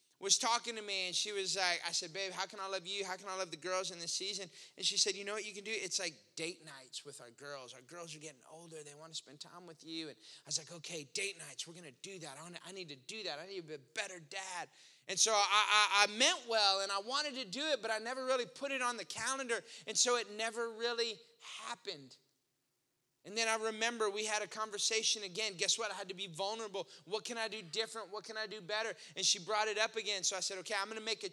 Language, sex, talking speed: English, male, 280 wpm